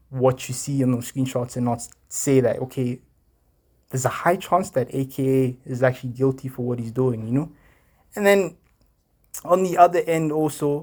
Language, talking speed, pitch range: English, 185 wpm, 125-135 Hz